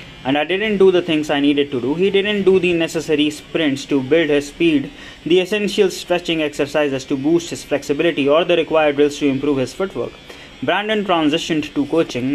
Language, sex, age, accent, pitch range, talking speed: English, male, 20-39, Indian, 140-165 Hz, 195 wpm